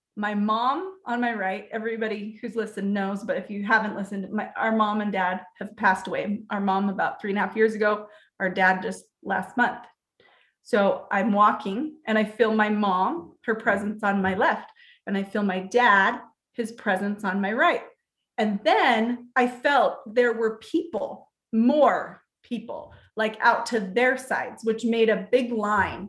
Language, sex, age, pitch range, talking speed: English, female, 30-49, 210-255 Hz, 175 wpm